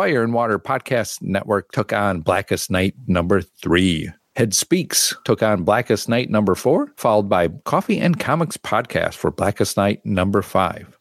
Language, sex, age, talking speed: English, male, 50-69, 165 wpm